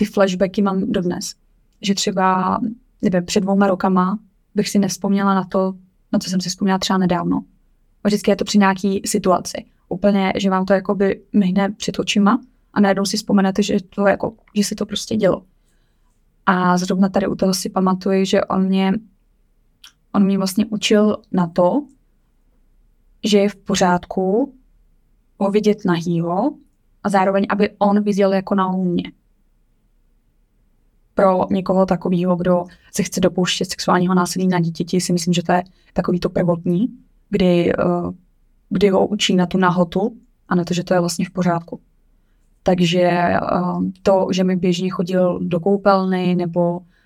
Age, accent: 20-39, native